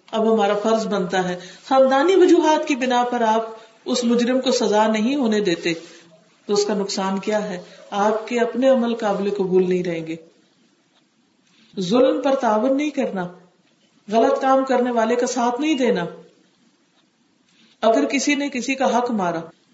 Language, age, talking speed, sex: Urdu, 50-69, 155 wpm, female